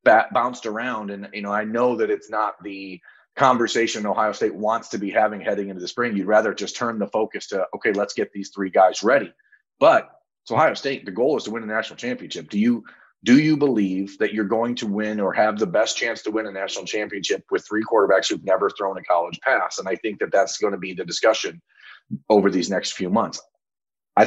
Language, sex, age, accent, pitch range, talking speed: English, male, 30-49, American, 100-120 Hz, 230 wpm